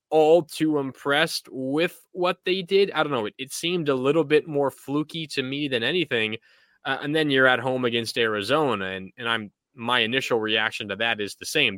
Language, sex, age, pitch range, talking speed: English, male, 20-39, 125-155 Hz, 210 wpm